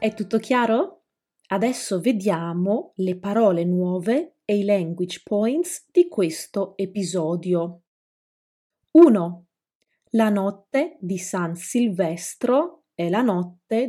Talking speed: 105 wpm